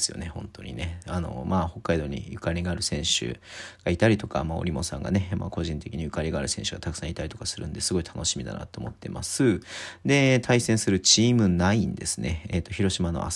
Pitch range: 90-110 Hz